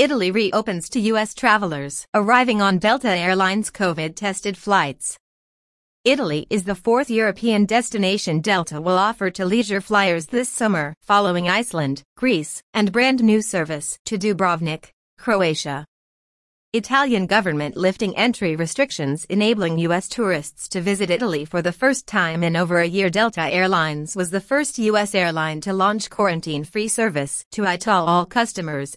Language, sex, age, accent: English, female, 30-49, American